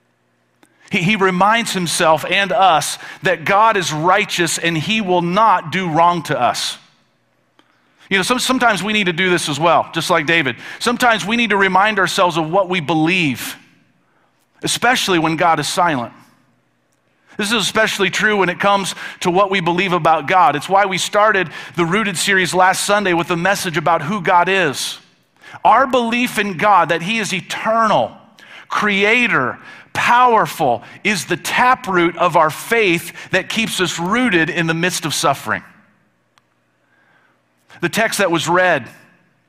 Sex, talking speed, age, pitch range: male, 160 wpm, 40-59, 170-210 Hz